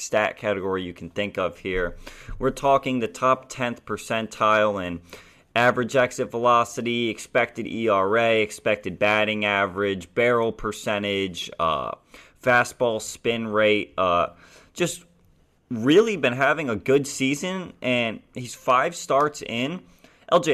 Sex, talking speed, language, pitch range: male, 125 wpm, English, 105-130 Hz